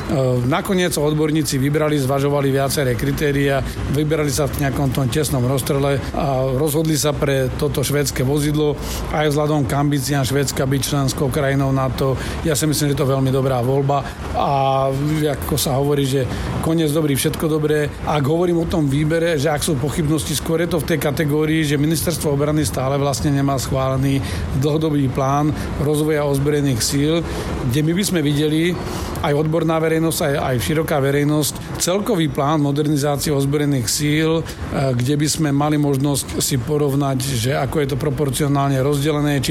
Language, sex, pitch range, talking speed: Slovak, male, 135-150 Hz, 160 wpm